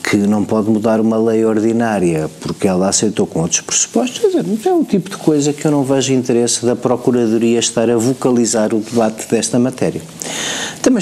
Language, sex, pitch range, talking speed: Portuguese, male, 110-135 Hz, 190 wpm